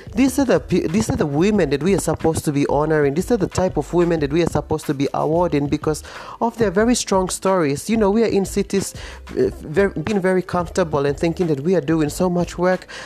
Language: English